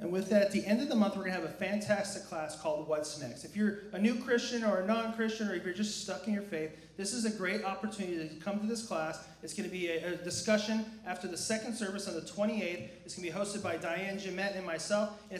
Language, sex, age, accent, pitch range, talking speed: English, male, 30-49, American, 170-210 Hz, 275 wpm